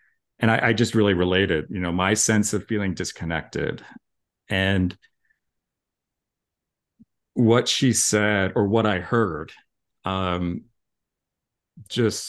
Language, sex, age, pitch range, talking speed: English, male, 50-69, 90-110 Hz, 110 wpm